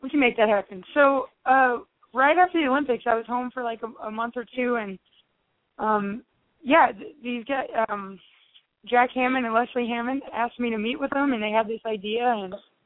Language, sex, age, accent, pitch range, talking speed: English, female, 20-39, American, 215-250 Hz, 210 wpm